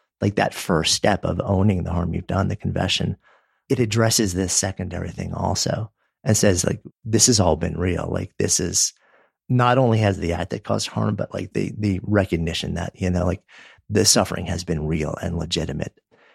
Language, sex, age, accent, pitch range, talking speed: English, male, 50-69, American, 95-115 Hz, 195 wpm